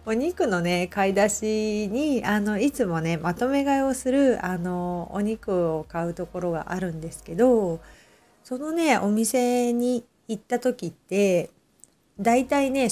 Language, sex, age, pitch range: Japanese, female, 40-59, 175-230 Hz